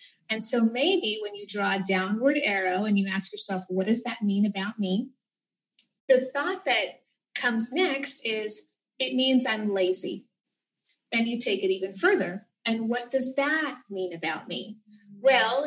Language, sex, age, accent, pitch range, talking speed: English, female, 30-49, American, 195-260 Hz, 165 wpm